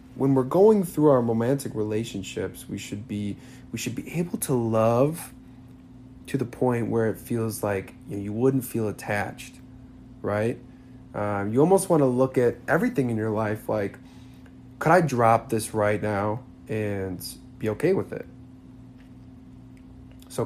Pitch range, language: 110-130 Hz, English